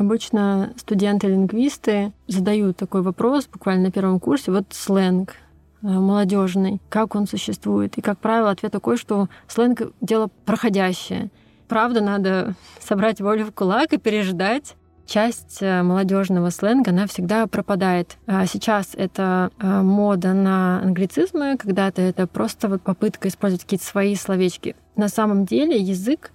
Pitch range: 190-220 Hz